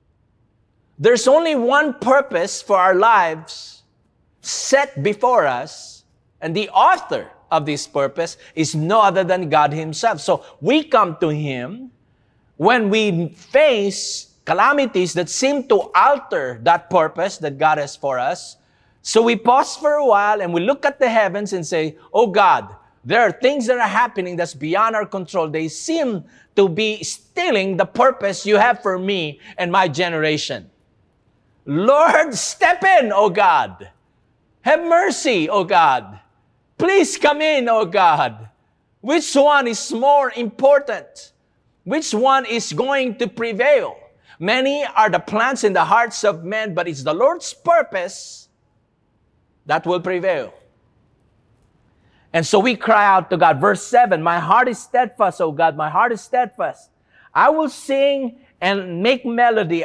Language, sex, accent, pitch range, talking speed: English, male, Filipino, 170-270 Hz, 150 wpm